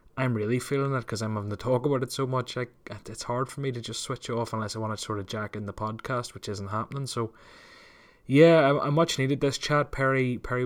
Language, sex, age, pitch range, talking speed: English, male, 20-39, 110-130 Hz, 255 wpm